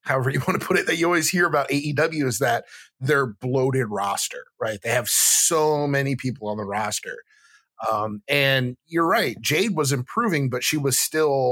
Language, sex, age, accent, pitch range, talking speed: English, male, 30-49, American, 130-165 Hz, 195 wpm